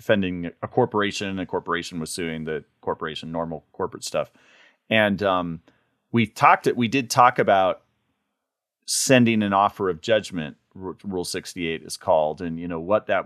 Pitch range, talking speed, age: 100-130 Hz, 165 wpm, 30-49